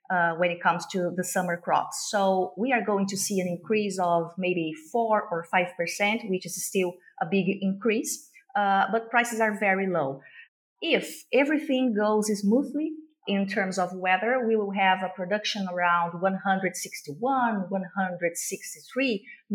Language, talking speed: English, 150 wpm